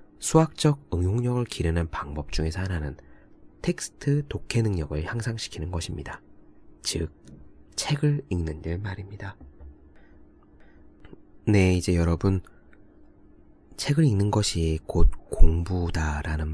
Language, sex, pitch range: Korean, male, 80-95 Hz